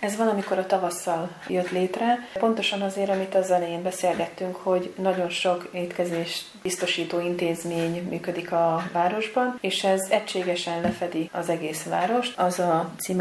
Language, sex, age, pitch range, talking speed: Hungarian, female, 30-49, 170-190 Hz, 145 wpm